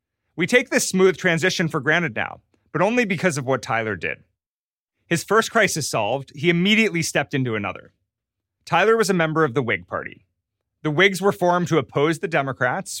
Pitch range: 115-170 Hz